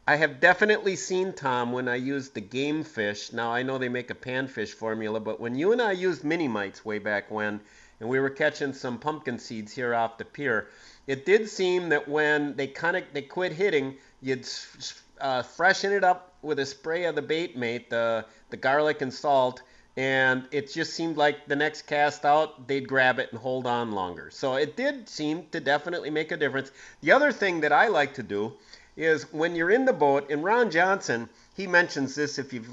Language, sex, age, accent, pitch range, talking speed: English, male, 40-59, American, 125-160 Hz, 215 wpm